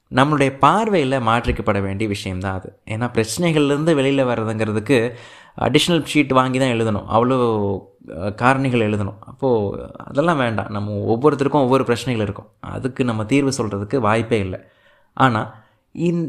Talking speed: 125 wpm